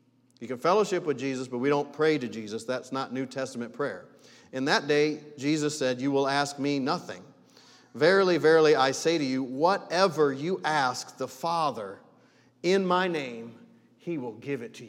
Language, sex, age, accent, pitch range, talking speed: English, male, 40-59, American, 125-160 Hz, 180 wpm